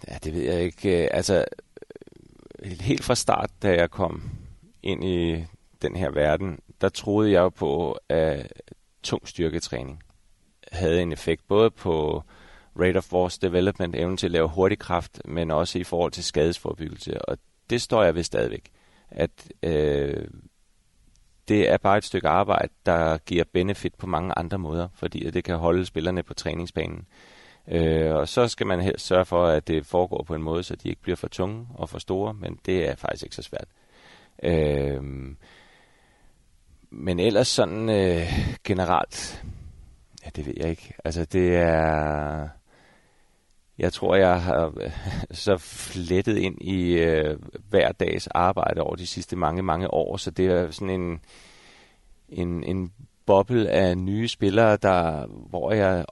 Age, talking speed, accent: 30-49, 160 wpm, native